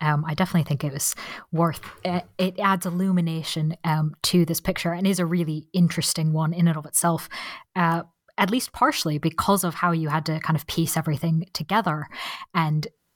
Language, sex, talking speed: English, female, 185 wpm